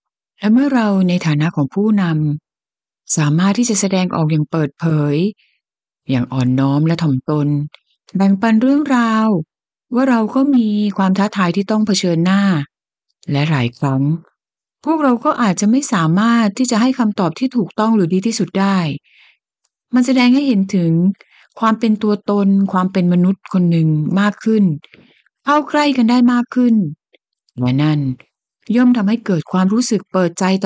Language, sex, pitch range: Thai, female, 160-220 Hz